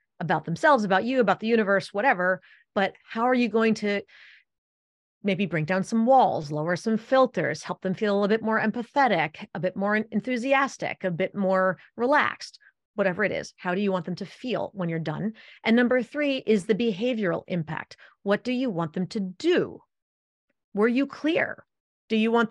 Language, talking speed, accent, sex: English, 190 wpm, American, female